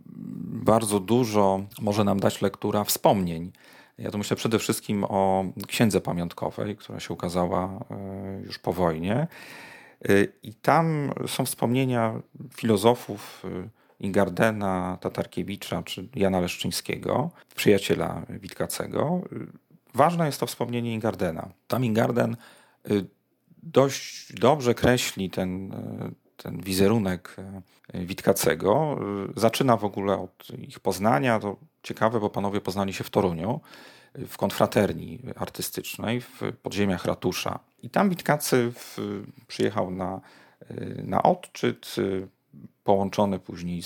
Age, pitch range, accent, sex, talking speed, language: 40-59, 95-125 Hz, native, male, 105 wpm, Polish